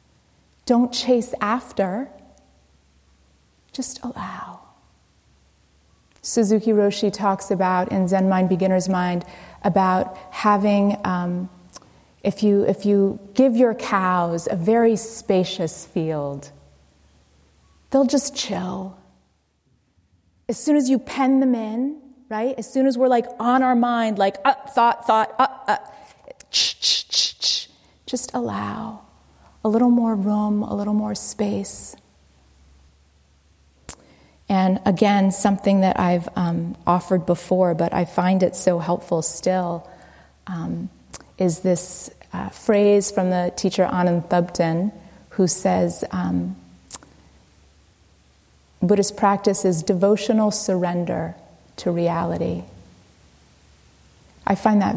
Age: 30-49